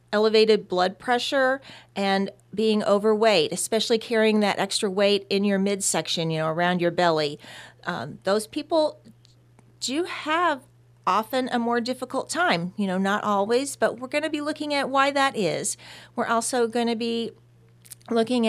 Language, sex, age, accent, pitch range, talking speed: English, female, 40-59, American, 190-240 Hz, 160 wpm